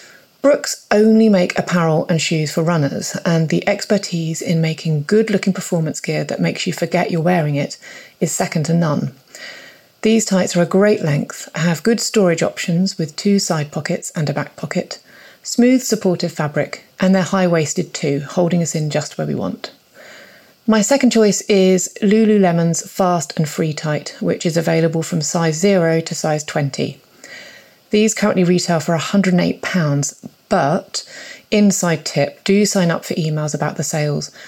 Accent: British